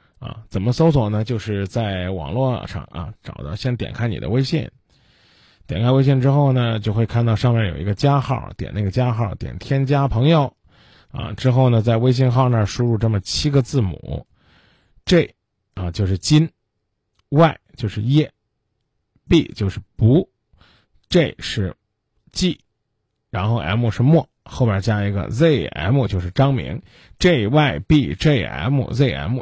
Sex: male